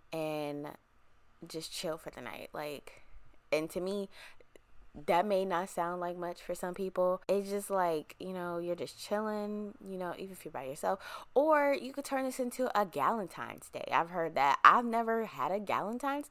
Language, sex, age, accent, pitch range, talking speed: English, female, 20-39, American, 170-230 Hz, 190 wpm